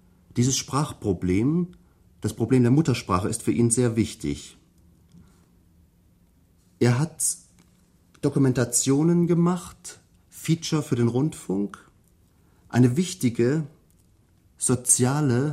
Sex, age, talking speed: male, 40-59, 85 wpm